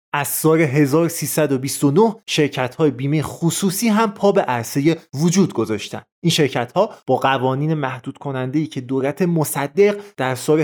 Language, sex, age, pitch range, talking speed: Persian, male, 30-49, 140-180 Hz, 135 wpm